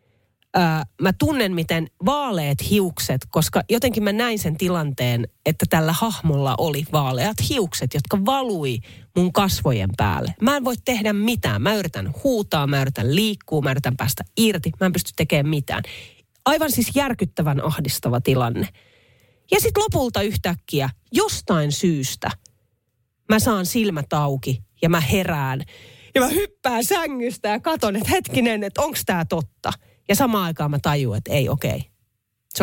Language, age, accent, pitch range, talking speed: Finnish, 30-49, native, 125-210 Hz, 145 wpm